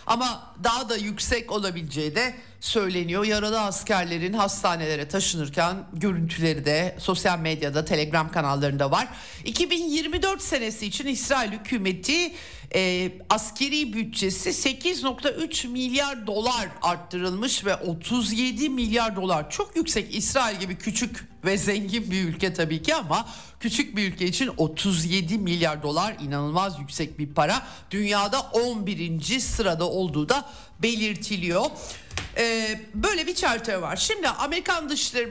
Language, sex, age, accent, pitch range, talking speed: Turkish, male, 60-79, native, 180-240 Hz, 120 wpm